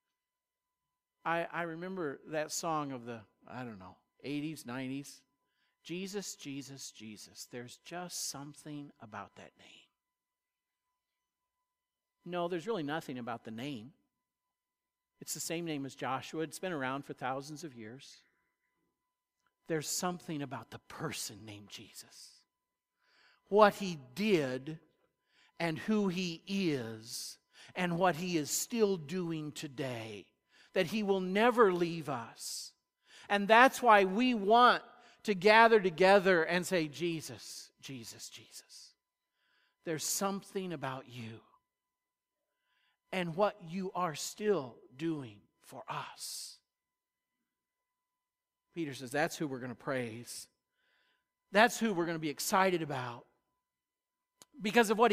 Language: English